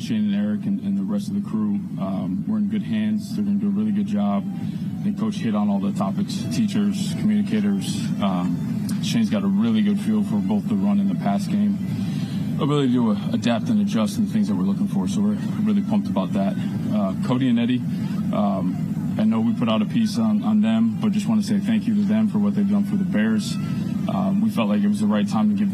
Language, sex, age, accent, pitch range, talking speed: English, male, 20-39, American, 200-215 Hz, 250 wpm